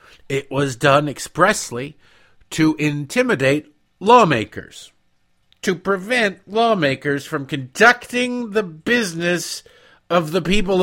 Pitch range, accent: 110-170 Hz, American